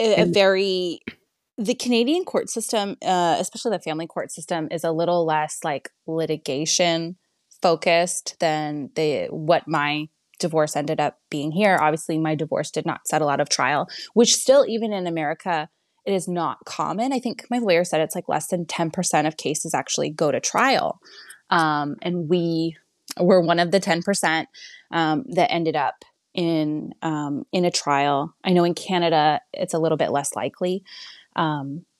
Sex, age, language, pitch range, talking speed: female, 20-39, English, 155-200 Hz, 170 wpm